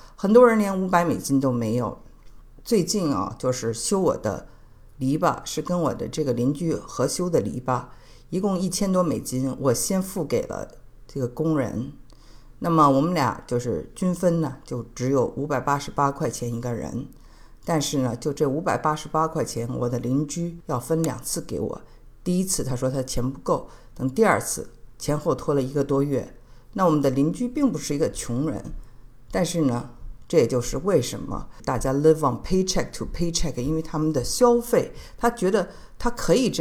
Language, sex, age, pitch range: Chinese, female, 50-69, 125-170 Hz